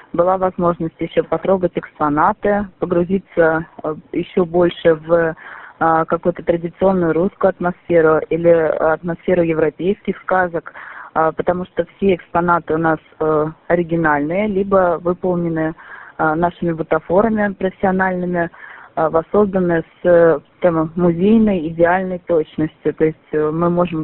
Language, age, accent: Russian, 20-39, native